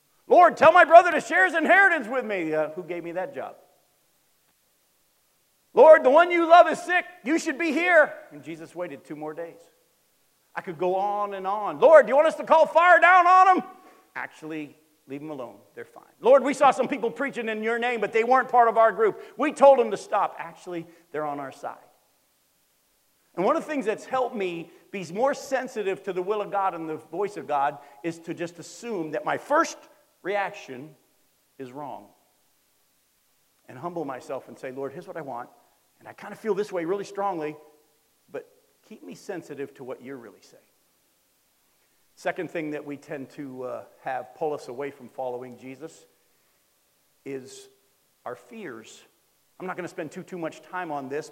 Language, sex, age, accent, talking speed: English, male, 50-69, American, 195 wpm